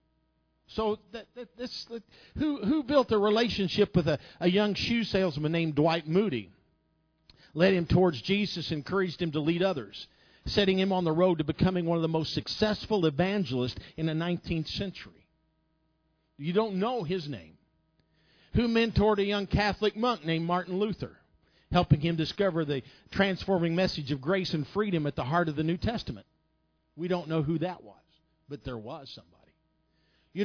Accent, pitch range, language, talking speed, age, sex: American, 165-230 Hz, English, 170 wpm, 50-69, male